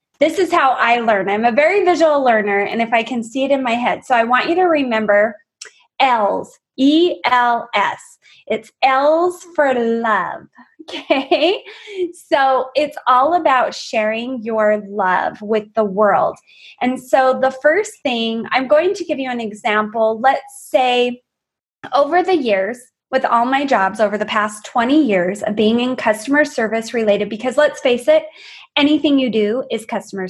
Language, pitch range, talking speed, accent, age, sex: English, 220-300 Hz, 165 wpm, American, 20-39, female